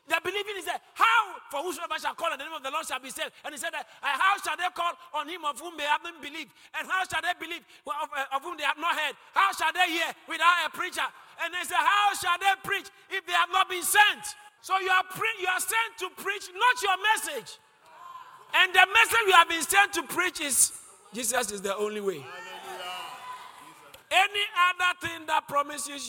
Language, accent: English, Nigerian